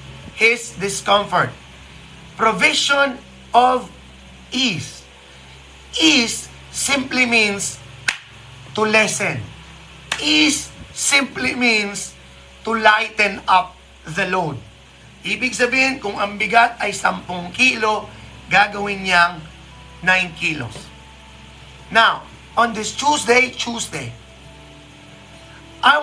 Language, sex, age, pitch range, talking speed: Filipino, male, 30-49, 140-220 Hz, 80 wpm